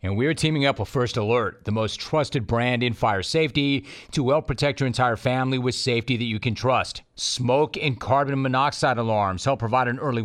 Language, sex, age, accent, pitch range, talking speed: English, male, 40-59, American, 115-140 Hz, 205 wpm